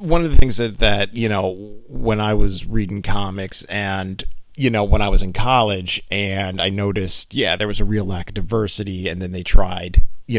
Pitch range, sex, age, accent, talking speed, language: 90-105 Hz, male, 40-59, American, 215 wpm, English